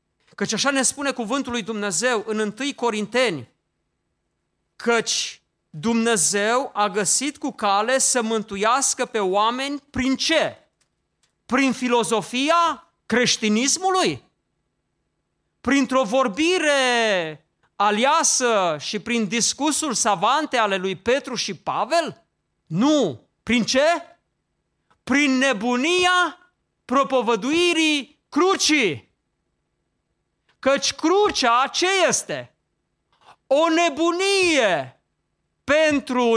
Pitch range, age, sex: 230-300 Hz, 40-59, male